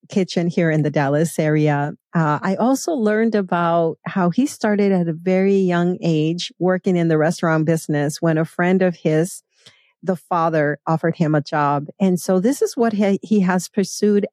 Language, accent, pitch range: English, American, 165-200 Hz